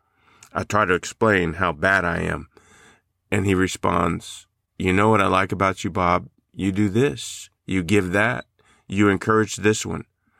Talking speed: 165 wpm